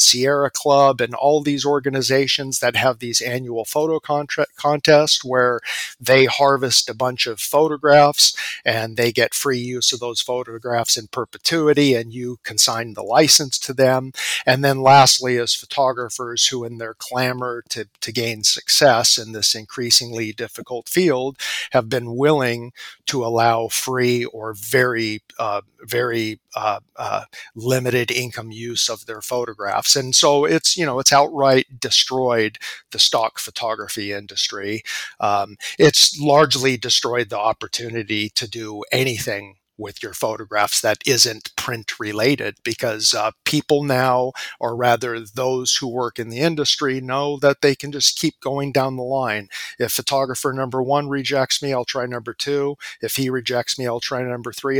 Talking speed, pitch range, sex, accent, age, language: 155 wpm, 115-140 Hz, male, American, 50-69, English